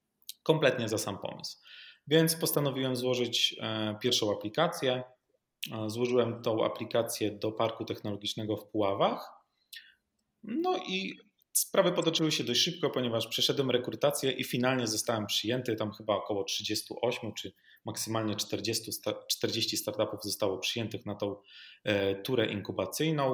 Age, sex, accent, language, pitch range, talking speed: 30-49, male, native, Polish, 105-125 Hz, 120 wpm